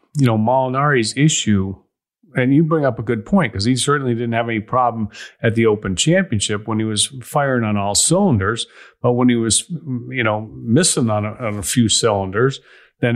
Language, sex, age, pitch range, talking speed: English, male, 40-59, 105-130 Hz, 190 wpm